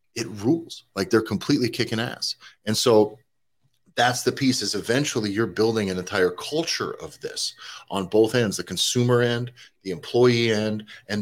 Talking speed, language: 165 wpm, English